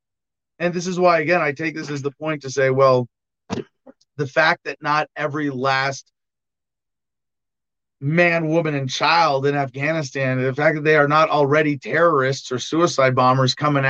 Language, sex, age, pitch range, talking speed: English, male, 30-49, 135-185 Hz, 165 wpm